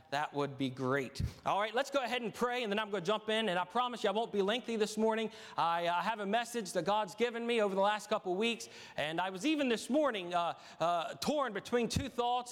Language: English